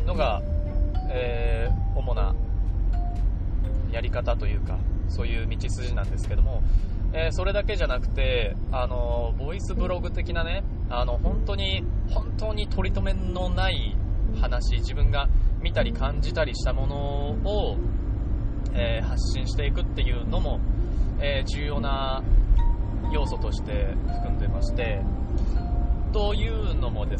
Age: 20-39